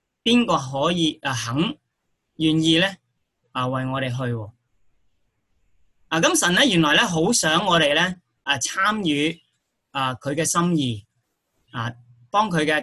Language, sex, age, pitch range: Chinese, male, 20-39, 125-180 Hz